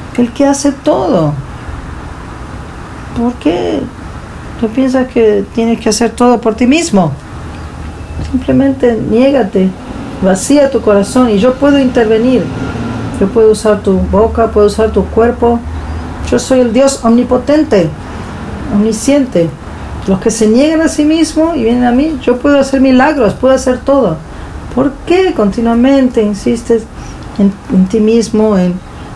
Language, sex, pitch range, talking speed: English, female, 210-275 Hz, 140 wpm